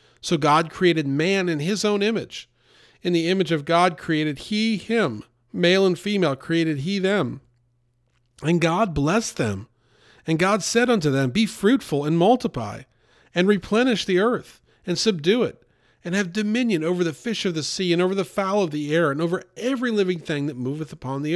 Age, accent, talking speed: 40-59, American, 190 wpm